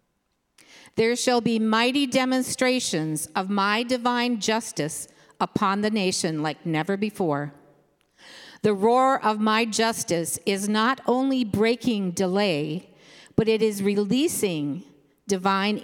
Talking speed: 115 wpm